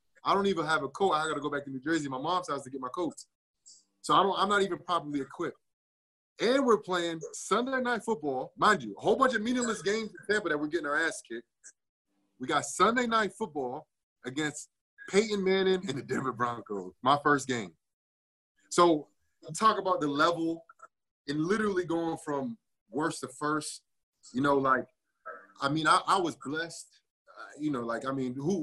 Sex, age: male, 30-49